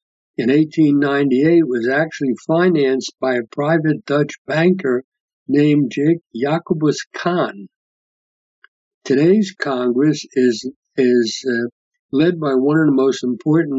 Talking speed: 115 wpm